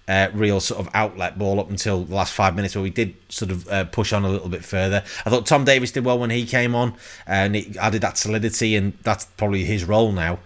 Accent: British